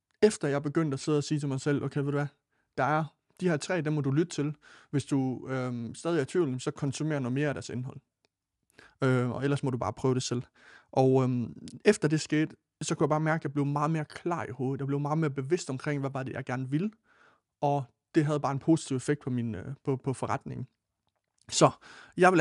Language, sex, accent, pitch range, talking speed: Danish, male, native, 130-155 Hz, 250 wpm